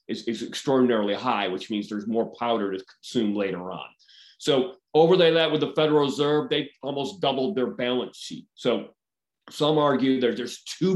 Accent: American